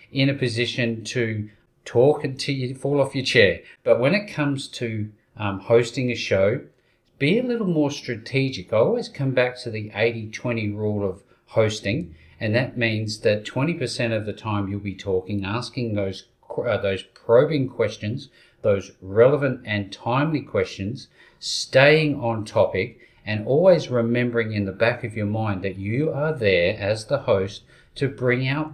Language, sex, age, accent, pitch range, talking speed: English, male, 40-59, Australian, 105-135 Hz, 165 wpm